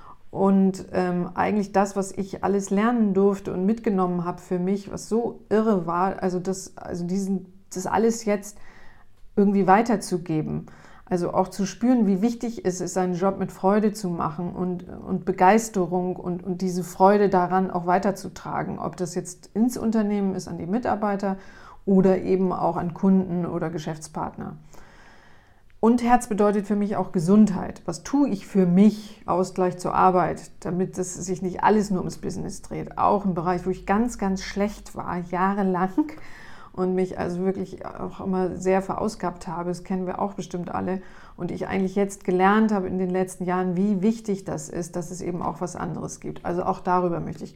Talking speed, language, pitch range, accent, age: 180 wpm, German, 185-205 Hz, German, 40-59